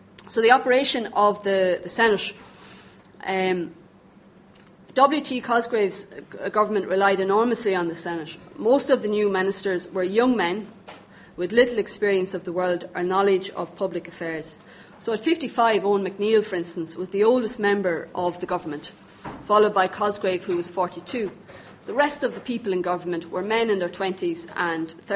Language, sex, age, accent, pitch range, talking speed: English, female, 30-49, Irish, 175-210 Hz, 160 wpm